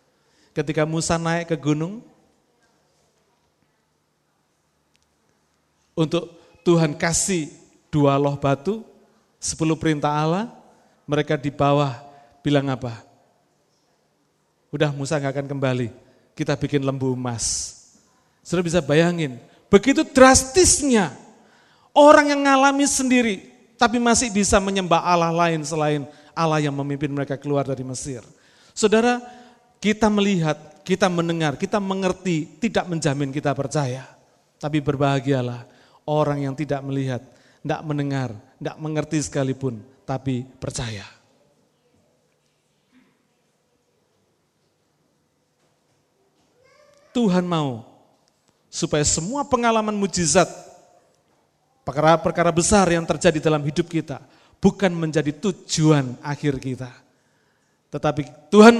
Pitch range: 140-190 Hz